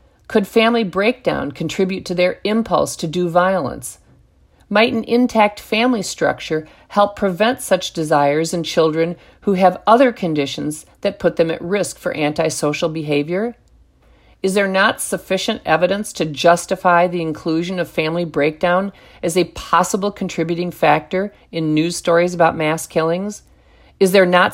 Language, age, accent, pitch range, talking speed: English, 50-69, American, 165-200 Hz, 145 wpm